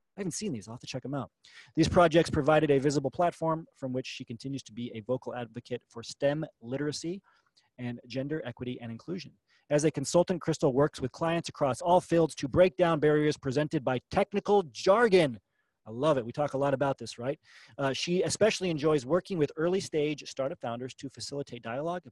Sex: male